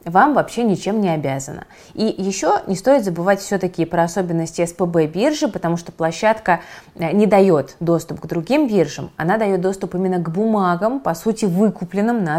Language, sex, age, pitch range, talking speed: Russian, female, 20-39, 160-200 Hz, 165 wpm